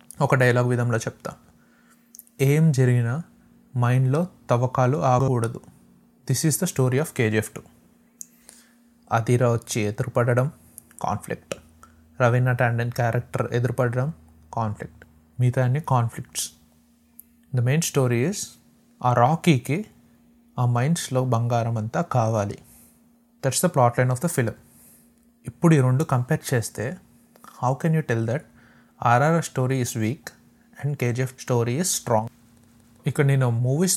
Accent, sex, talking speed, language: native, male, 120 wpm, Telugu